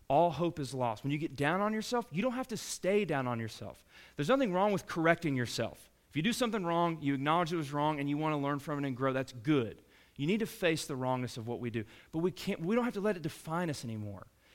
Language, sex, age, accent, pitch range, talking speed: English, male, 30-49, American, 125-175 Hz, 275 wpm